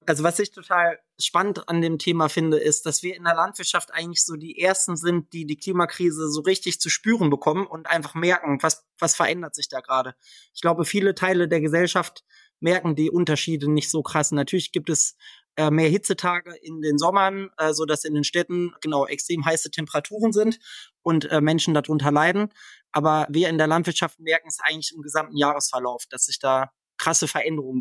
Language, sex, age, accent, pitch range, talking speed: German, male, 20-39, German, 150-175 Hz, 195 wpm